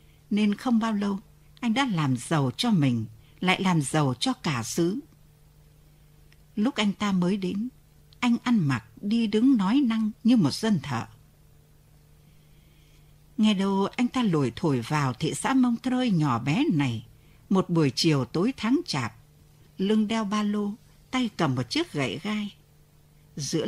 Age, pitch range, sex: 60-79, 150-225 Hz, female